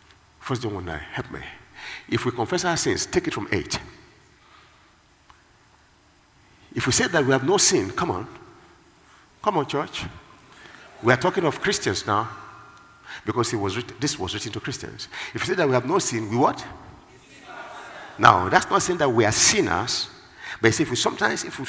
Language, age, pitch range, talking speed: English, 50-69, 100-145 Hz, 180 wpm